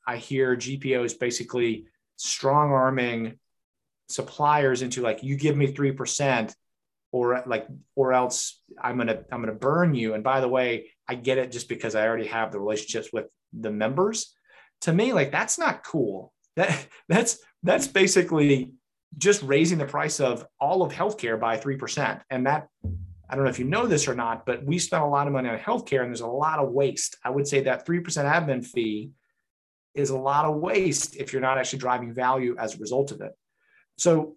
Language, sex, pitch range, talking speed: English, male, 120-150 Hz, 195 wpm